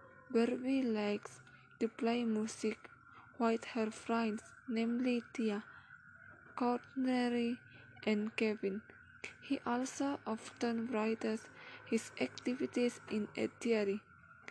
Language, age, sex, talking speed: English, 10-29, female, 90 wpm